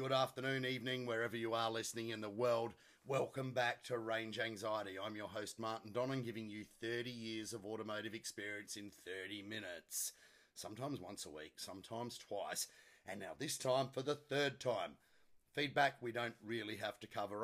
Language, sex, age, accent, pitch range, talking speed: English, male, 30-49, Australian, 115-130 Hz, 175 wpm